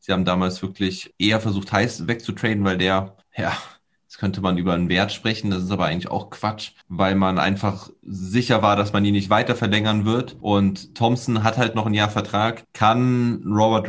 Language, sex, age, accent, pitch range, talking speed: German, male, 20-39, German, 95-115 Hz, 200 wpm